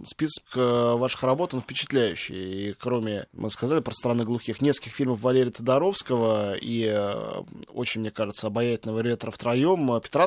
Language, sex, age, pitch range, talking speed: Russian, male, 20-39, 115-135 Hz, 140 wpm